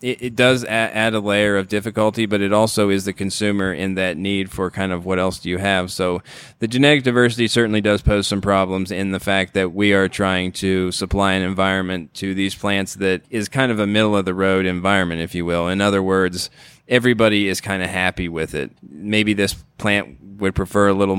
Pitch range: 95-110 Hz